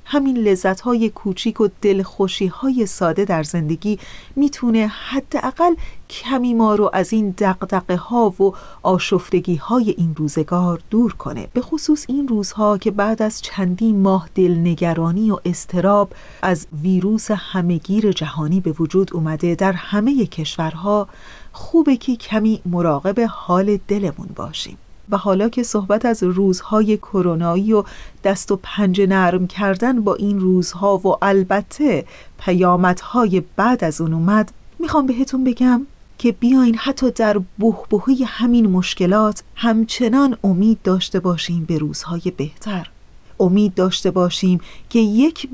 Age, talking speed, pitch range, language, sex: 30-49, 130 wpm, 180-230 Hz, Persian, female